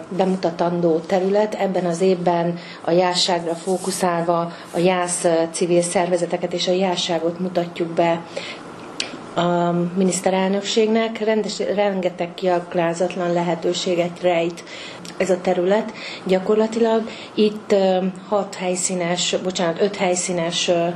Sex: female